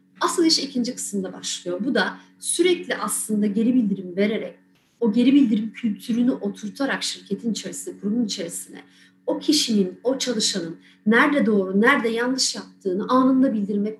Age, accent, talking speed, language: 30-49, native, 135 wpm, Turkish